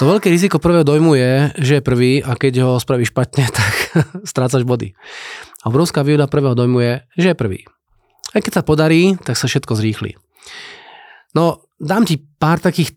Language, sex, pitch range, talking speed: Slovak, male, 125-155 Hz, 180 wpm